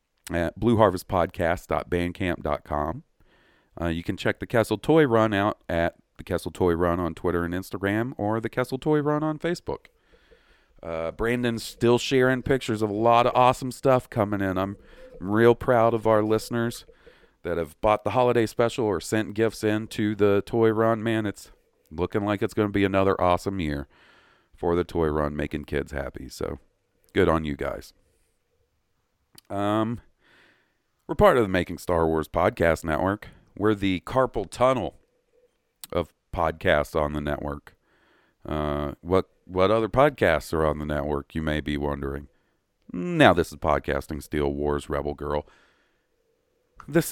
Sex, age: male, 40-59